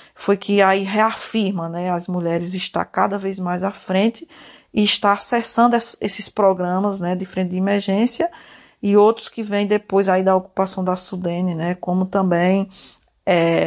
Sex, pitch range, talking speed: female, 185-205 Hz, 165 wpm